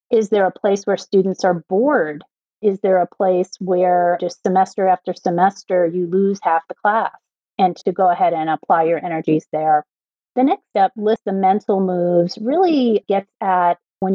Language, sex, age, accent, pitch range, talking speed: English, female, 30-49, American, 175-205 Hz, 180 wpm